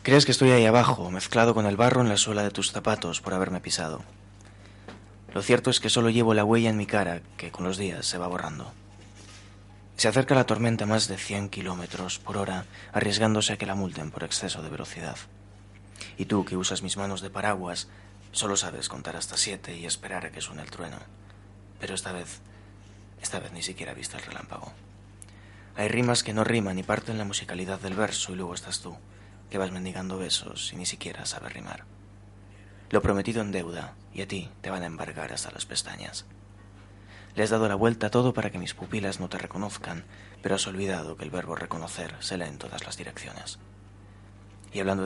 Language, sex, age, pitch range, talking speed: Spanish, male, 20-39, 95-105 Hz, 205 wpm